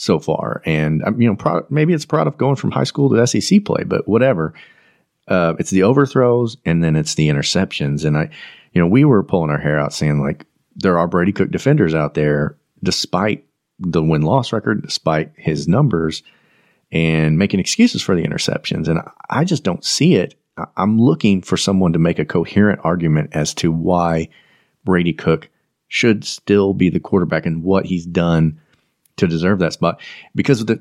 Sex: male